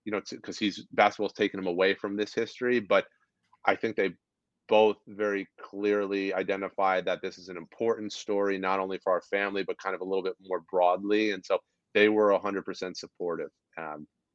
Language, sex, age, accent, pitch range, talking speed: English, male, 30-49, American, 100-115 Hz, 195 wpm